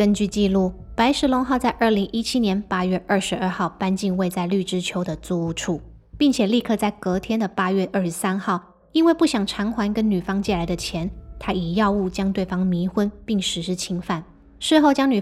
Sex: female